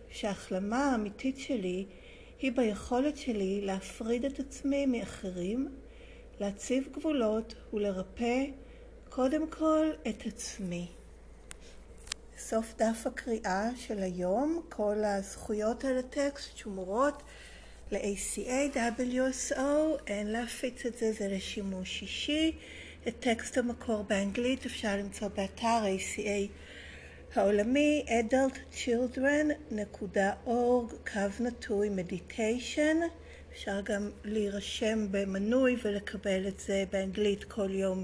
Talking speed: 90 wpm